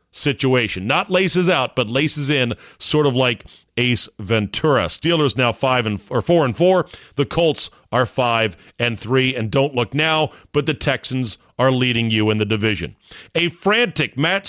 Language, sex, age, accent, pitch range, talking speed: English, male, 40-59, American, 125-170 Hz, 180 wpm